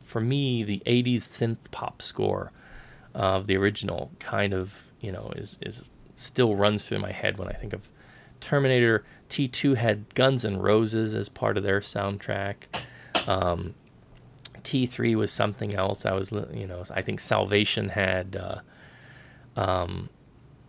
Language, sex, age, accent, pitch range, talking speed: English, male, 20-39, American, 100-130 Hz, 150 wpm